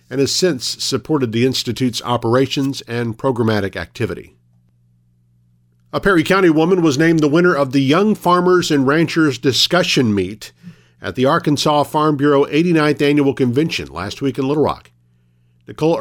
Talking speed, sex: 150 wpm, male